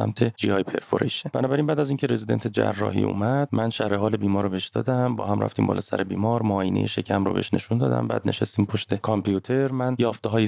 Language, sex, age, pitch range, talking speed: Persian, male, 30-49, 100-120 Hz, 190 wpm